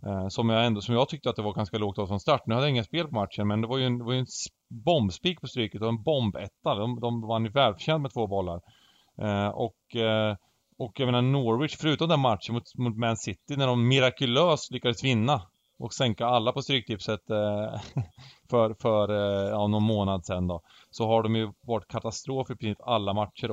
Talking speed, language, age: 215 wpm, Swedish, 30-49